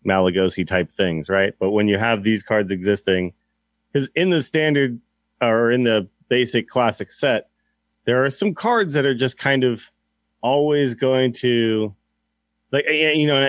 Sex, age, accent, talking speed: male, 30-49, American, 160 wpm